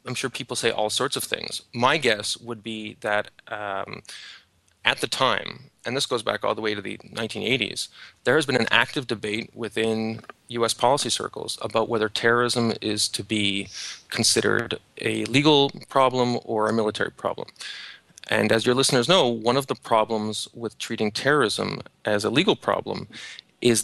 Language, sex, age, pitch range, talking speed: English, male, 30-49, 110-120 Hz, 170 wpm